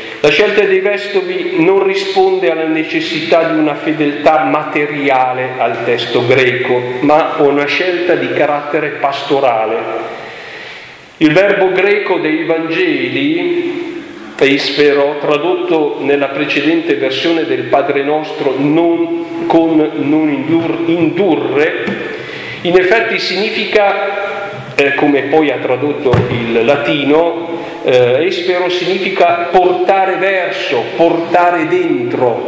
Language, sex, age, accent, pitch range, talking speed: Italian, male, 50-69, native, 145-190 Hz, 105 wpm